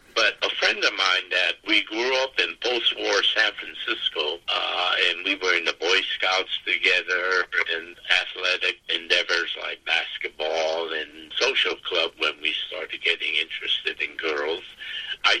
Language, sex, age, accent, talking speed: English, male, 60-79, American, 150 wpm